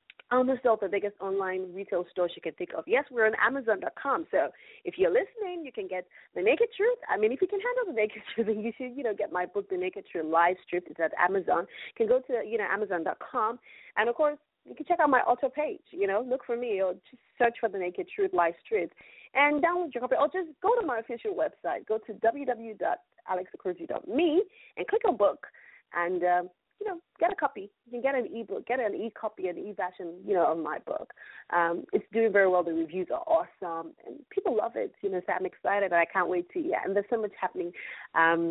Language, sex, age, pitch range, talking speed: English, female, 30-49, 190-315 Hz, 235 wpm